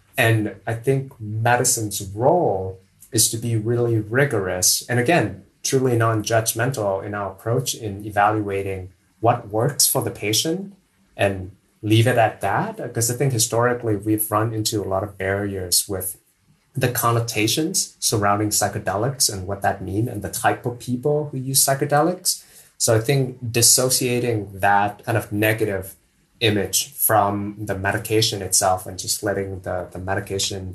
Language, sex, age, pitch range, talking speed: English, male, 20-39, 100-125 Hz, 150 wpm